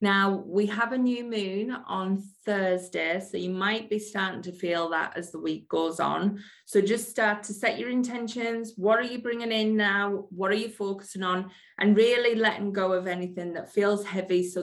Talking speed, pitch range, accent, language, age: 200 wpm, 175-225 Hz, British, English, 20-39